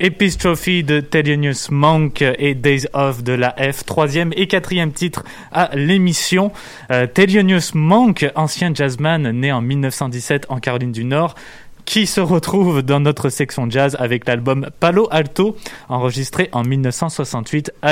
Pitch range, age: 130-170 Hz, 20-39